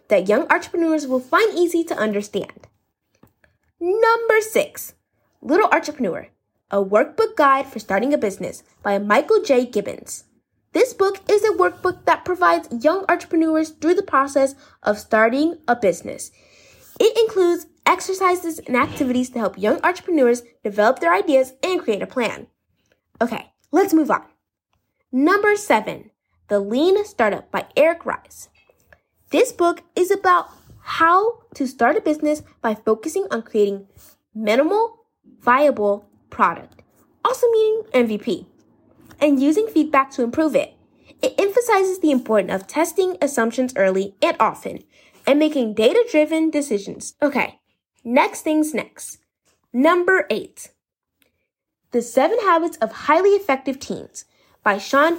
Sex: female